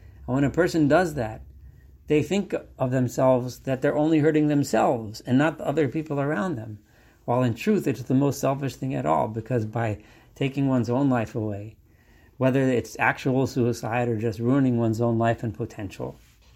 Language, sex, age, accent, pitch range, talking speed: English, male, 50-69, American, 110-135 Hz, 180 wpm